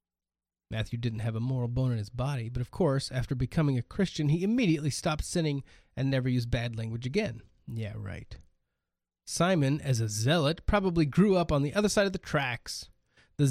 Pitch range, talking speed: 120-160 Hz, 190 wpm